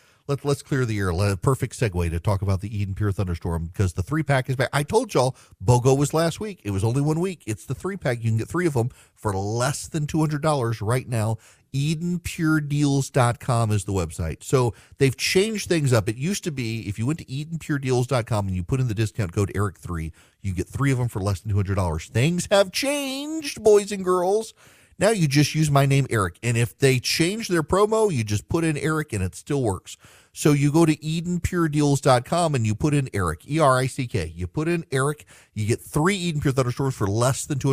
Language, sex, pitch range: English, male, 105-150 Hz